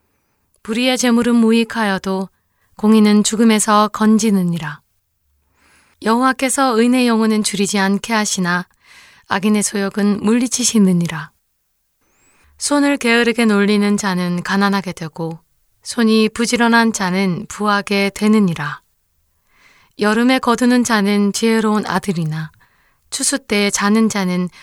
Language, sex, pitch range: Korean, female, 185-225 Hz